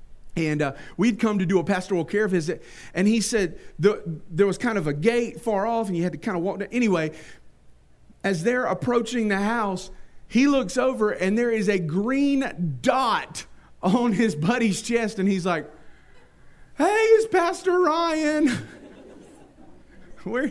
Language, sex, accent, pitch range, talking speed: English, male, American, 145-225 Hz, 160 wpm